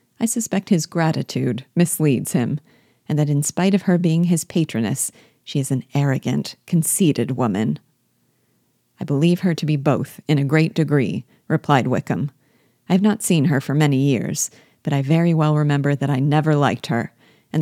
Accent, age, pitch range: American, 40-59, 140-165 Hz